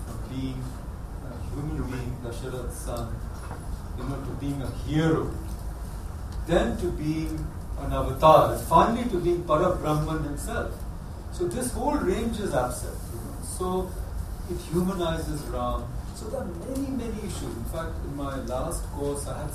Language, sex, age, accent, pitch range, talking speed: English, male, 40-59, Indian, 85-135 Hz, 155 wpm